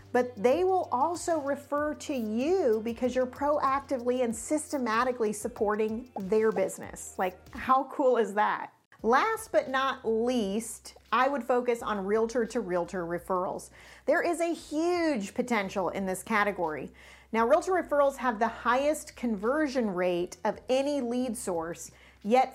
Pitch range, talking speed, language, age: 215-275 Hz, 140 wpm, English, 40-59